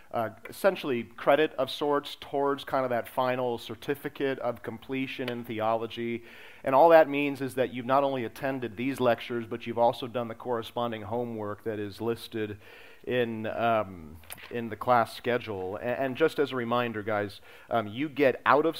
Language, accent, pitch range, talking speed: English, American, 110-130 Hz, 175 wpm